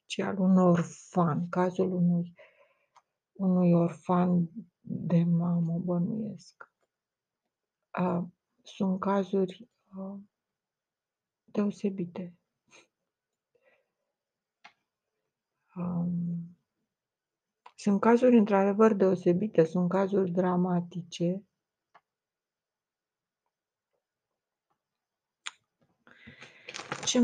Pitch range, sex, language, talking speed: 175-200 Hz, female, Romanian, 50 wpm